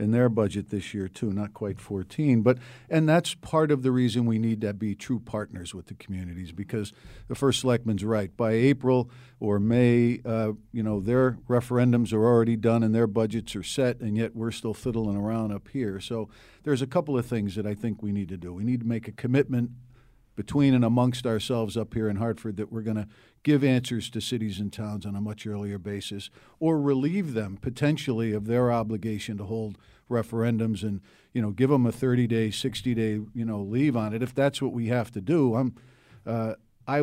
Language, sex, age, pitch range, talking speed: English, male, 50-69, 105-125 Hz, 210 wpm